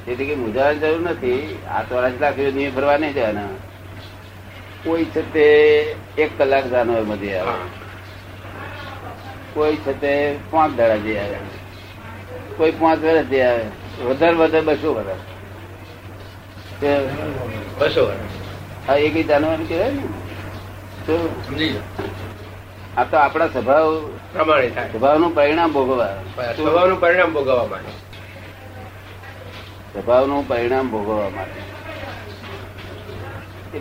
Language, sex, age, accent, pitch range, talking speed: Gujarati, male, 60-79, native, 100-140 Hz, 90 wpm